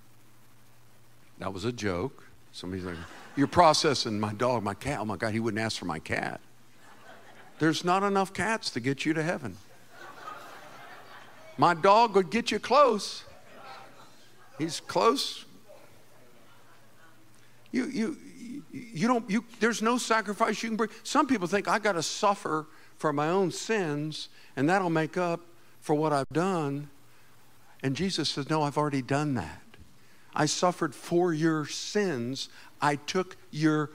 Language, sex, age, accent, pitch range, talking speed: English, male, 50-69, American, 130-215 Hz, 150 wpm